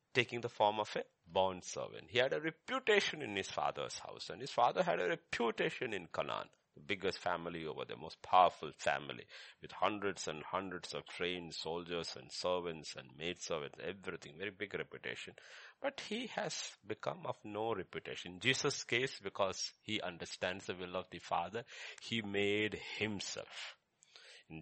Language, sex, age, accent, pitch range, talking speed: English, male, 50-69, Indian, 95-140 Hz, 170 wpm